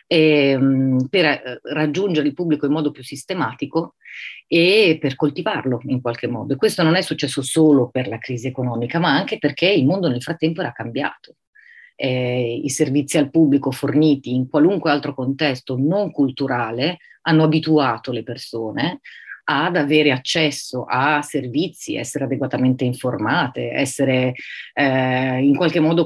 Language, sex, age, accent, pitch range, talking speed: Italian, female, 30-49, native, 130-155 Hz, 145 wpm